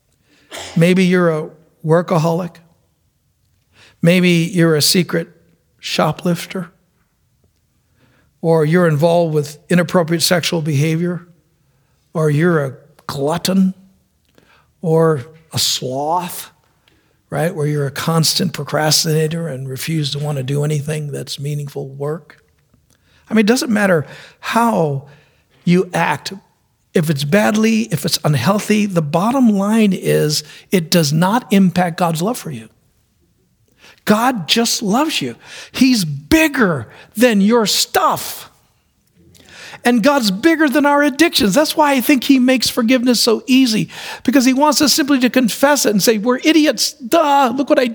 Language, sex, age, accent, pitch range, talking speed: English, male, 60-79, American, 155-255 Hz, 130 wpm